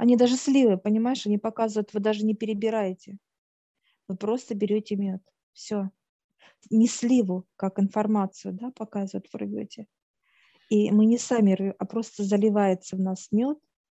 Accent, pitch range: native, 195-215 Hz